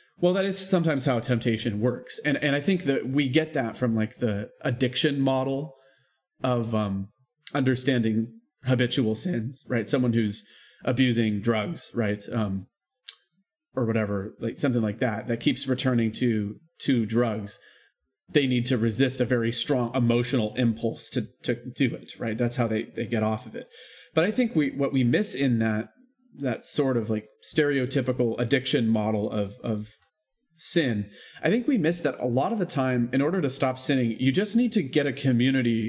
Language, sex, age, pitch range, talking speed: English, male, 30-49, 115-150 Hz, 180 wpm